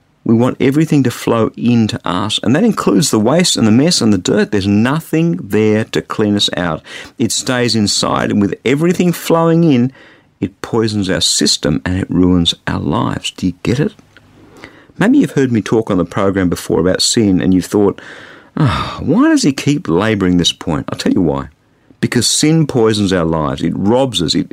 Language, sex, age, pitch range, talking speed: English, male, 50-69, 105-145 Hz, 195 wpm